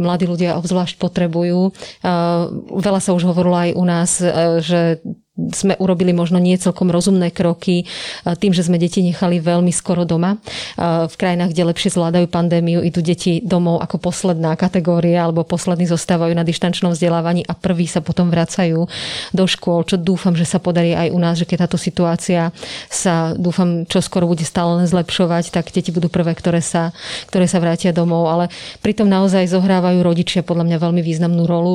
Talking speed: 170 wpm